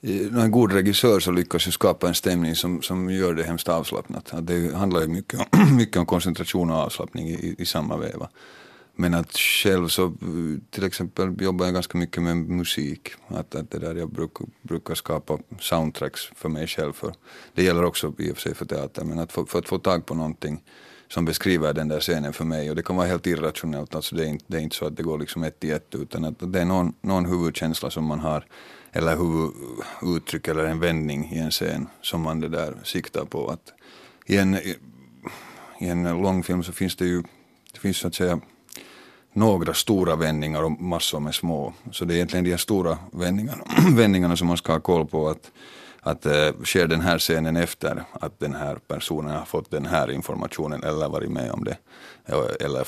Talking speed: 200 wpm